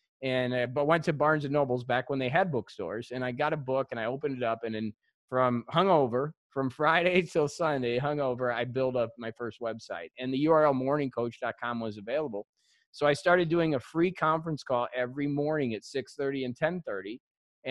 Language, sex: English, male